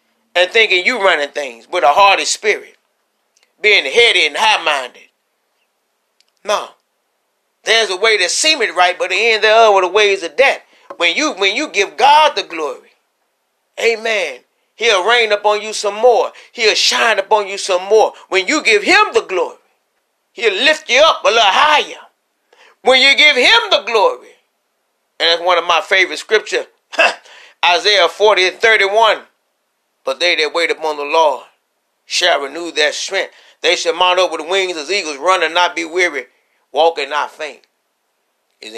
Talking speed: 170 wpm